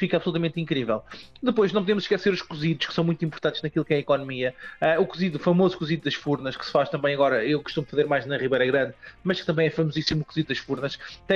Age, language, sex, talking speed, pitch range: 20-39, Portuguese, male, 250 wpm, 150-175 Hz